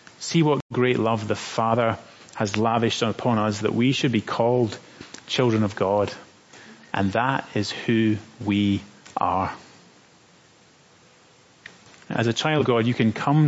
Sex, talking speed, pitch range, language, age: male, 145 wpm, 110-140 Hz, English, 30-49